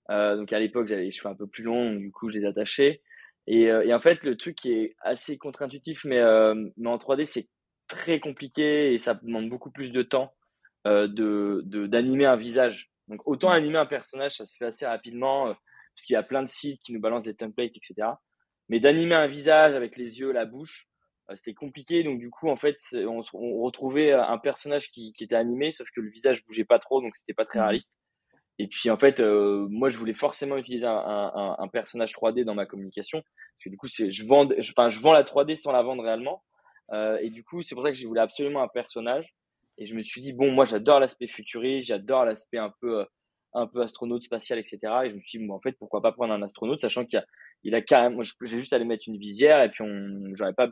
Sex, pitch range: male, 110-140 Hz